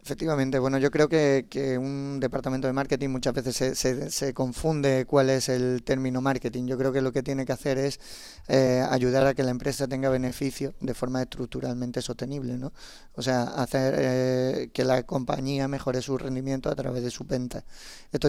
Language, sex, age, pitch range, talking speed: Spanish, male, 30-49, 130-140 Hz, 195 wpm